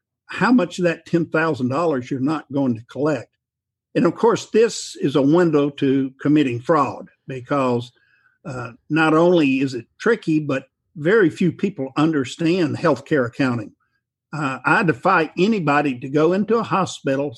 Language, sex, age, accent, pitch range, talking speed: English, male, 50-69, American, 135-170 Hz, 150 wpm